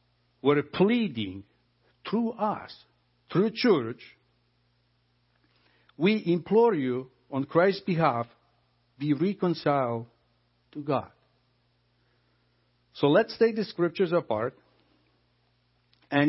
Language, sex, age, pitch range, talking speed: English, male, 60-79, 100-150 Hz, 85 wpm